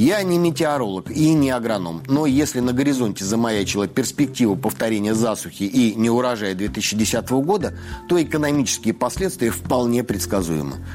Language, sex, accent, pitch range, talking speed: Russian, male, native, 105-140 Hz, 125 wpm